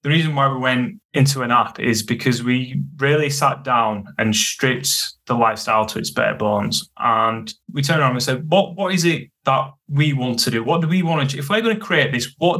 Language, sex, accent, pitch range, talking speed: English, male, British, 120-150 Hz, 235 wpm